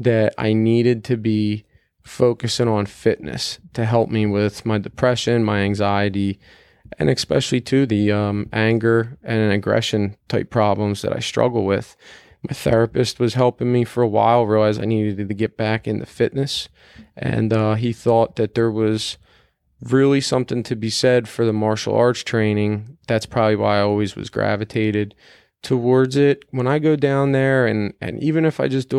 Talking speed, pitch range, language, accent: 175 wpm, 110-125 Hz, English, American